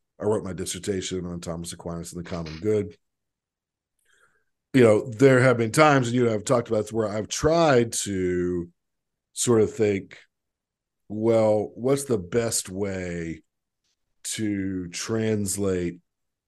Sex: male